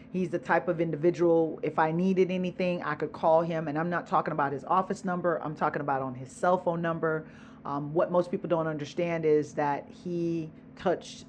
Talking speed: 205 wpm